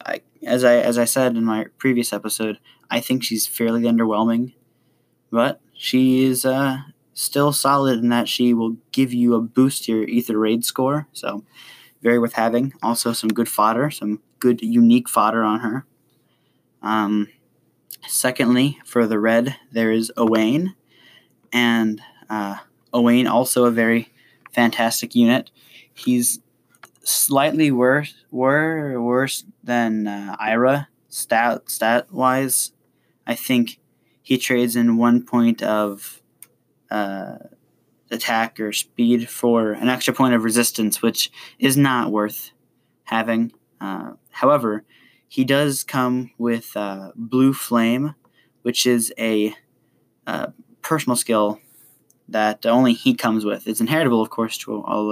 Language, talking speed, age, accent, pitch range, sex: English, 135 wpm, 10-29, American, 110-130 Hz, male